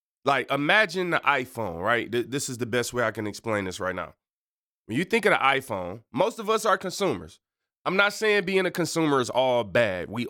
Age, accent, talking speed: 20-39, American, 215 wpm